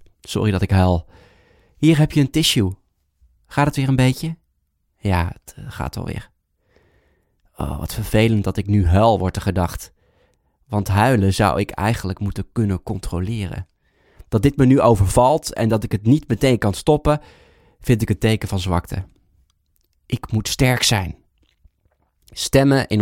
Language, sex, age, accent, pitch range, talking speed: Dutch, male, 20-39, Dutch, 90-125 Hz, 160 wpm